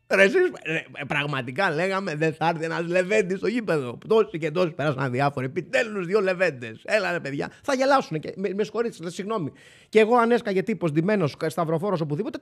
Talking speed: 165 wpm